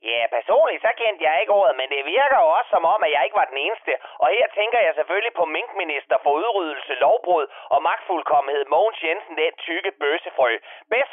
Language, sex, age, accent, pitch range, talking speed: Danish, male, 30-49, native, 180-275 Hz, 205 wpm